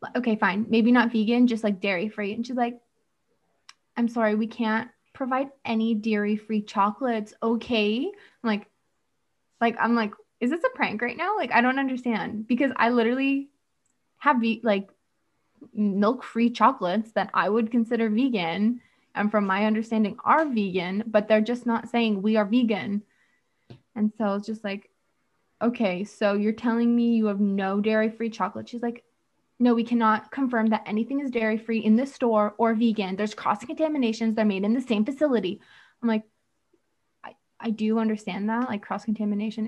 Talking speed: 170 wpm